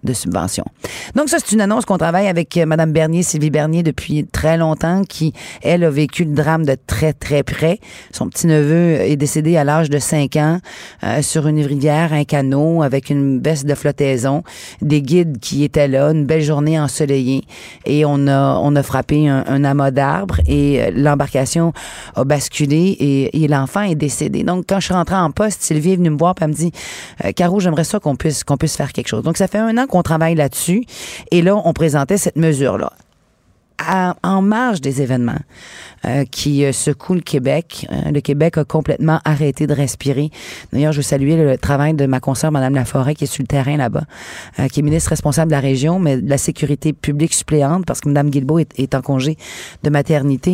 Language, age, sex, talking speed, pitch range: French, 30-49, female, 210 wpm, 140-165 Hz